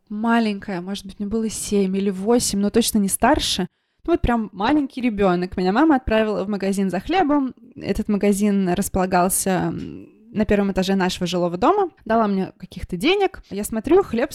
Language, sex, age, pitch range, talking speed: Russian, female, 20-39, 190-240 Hz, 165 wpm